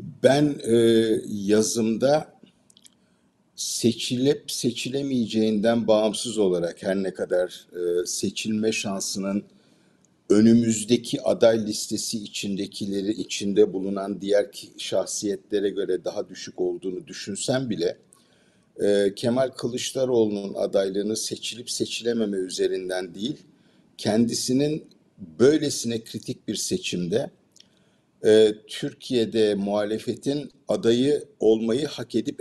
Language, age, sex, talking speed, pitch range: Turkish, 50-69, male, 85 wpm, 105-125 Hz